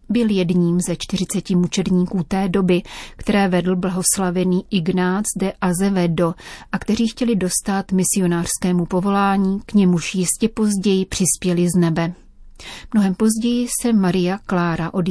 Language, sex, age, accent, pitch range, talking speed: Czech, female, 30-49, native, 180-200 Hz, 125 wpm